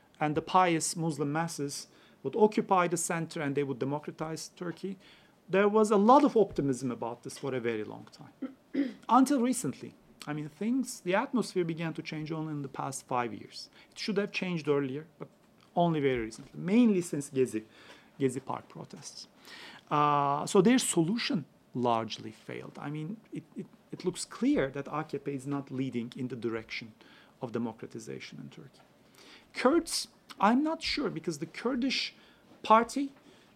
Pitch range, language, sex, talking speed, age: 145-215 Hz, French, male, 165 wpm, 40-59